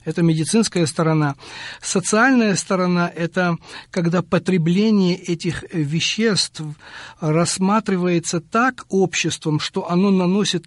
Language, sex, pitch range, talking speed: Russian, male, 145-175 Hz, 90 wpm